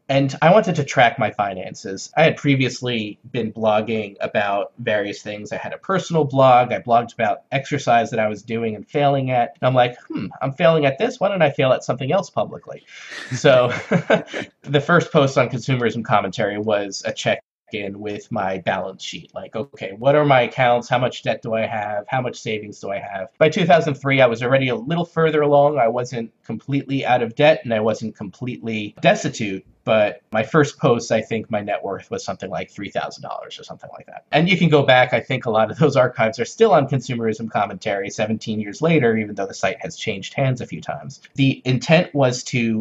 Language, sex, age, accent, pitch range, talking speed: English, male, 30-49, American, 110-140 Hz, 210 wpm